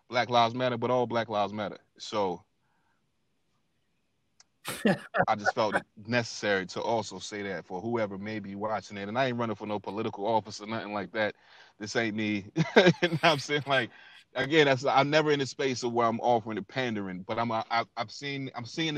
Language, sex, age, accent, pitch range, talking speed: English, male, 30-49, American, 105-135 Hz, 200 wpm